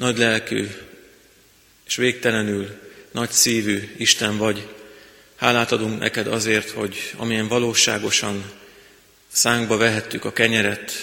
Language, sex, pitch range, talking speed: Hungarian, male, 105-120 Hz, 105 wpm